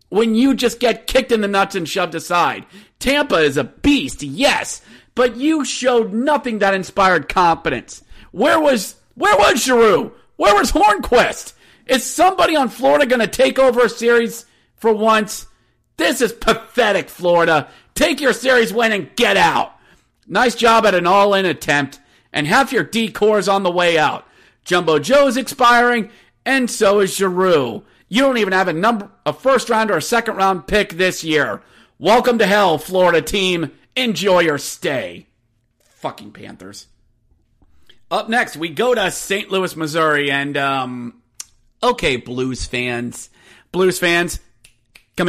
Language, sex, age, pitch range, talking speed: English, male, 40-59, 155-240 Hz, 150 wpm